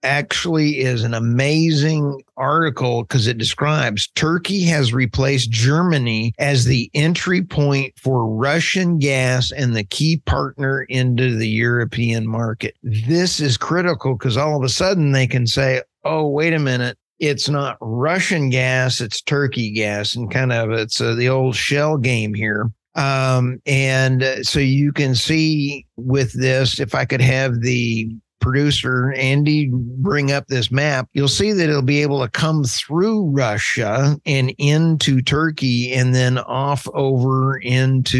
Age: 50-69